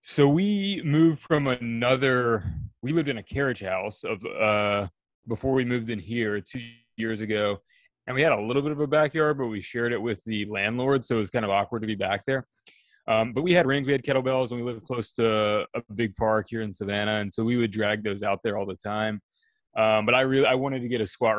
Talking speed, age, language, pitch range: 245 wpm, 20-39, English, 105-120 Hz